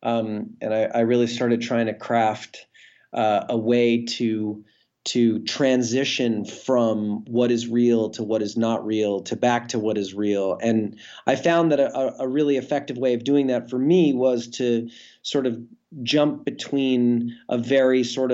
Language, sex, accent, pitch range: English, male, American, 110-130 Hz